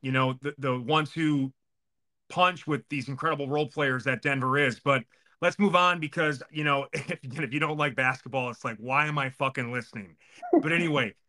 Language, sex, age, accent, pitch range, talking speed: English, male, 30-49, American, 140-180 Hz, 195 wpm